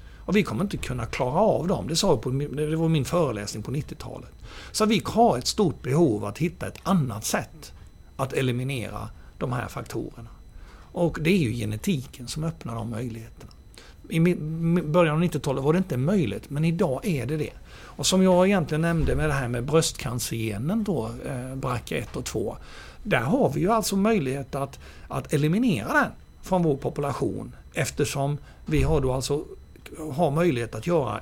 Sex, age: male, 60-79